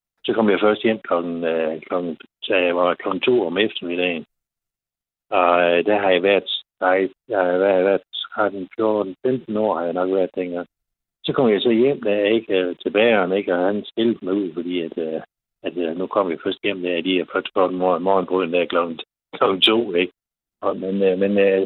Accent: native